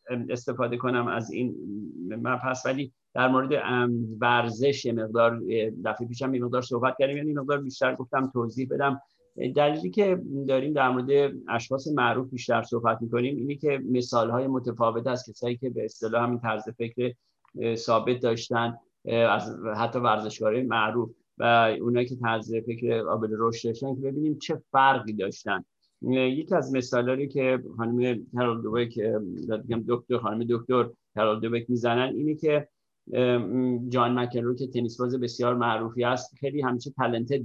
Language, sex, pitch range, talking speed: Persian, male, 115-135 Hz, 145 wpm